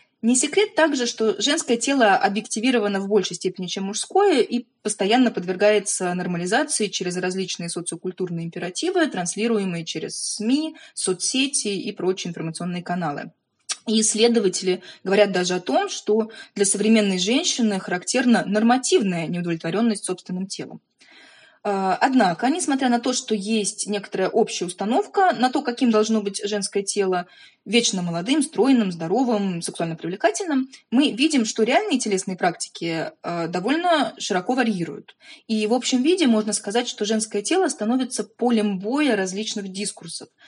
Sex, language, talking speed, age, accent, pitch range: female, Russian, 130 wpm, 20-39, native, 185-250 Hz